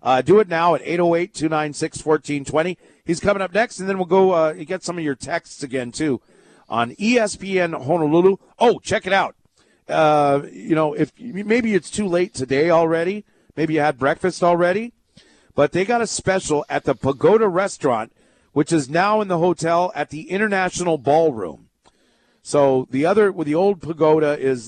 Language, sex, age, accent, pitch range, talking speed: English, male, 40-59, American, 140-180 Hz, 175 wpm